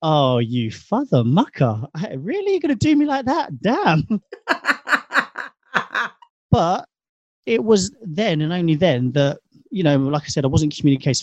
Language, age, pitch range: English, 30-49, 120-155 Hz